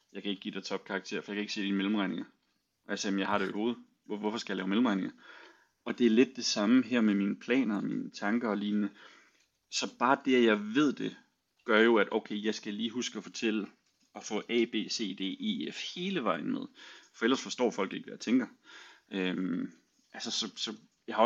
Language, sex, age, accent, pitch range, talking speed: Danish, male, 30-49, native, 100-135 Hz, 230 wpm